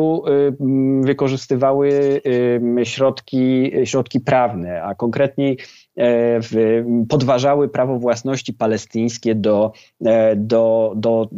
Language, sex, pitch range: Polish, male, 115-140 Hz